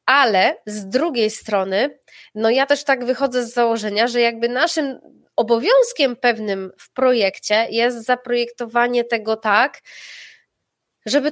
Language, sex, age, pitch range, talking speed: Polish, female, 20-39, 200-245 Hz, 120 wpm